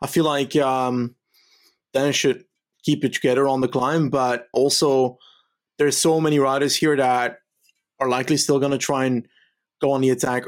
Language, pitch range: English, 125-145 Hz